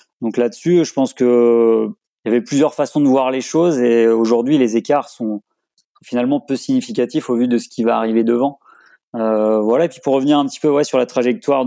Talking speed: 220 wpm